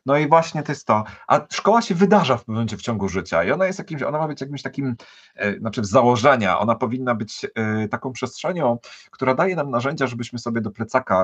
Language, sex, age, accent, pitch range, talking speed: Polish, male, 40-59, native, 100-130 Hz, 225 wpm